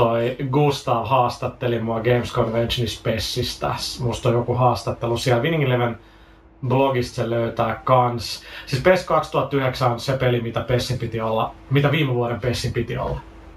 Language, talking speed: Finnish, 145 wpm